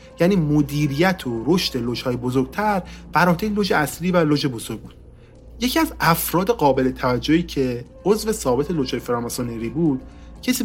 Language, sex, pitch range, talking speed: Persian, male, 125-175 Hz, 145 wpm